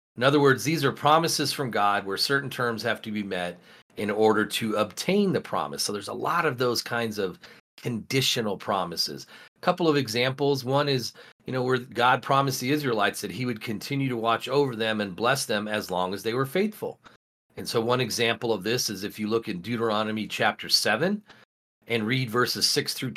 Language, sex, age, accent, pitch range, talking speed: English, male, 40-59, American, 110-140 Hz, 205 wpm